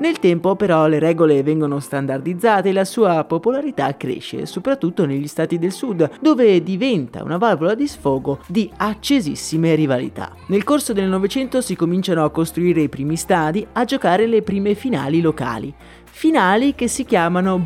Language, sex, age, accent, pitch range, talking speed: Italian, male, 30-49, native, 150-220 Hz, 160 wpm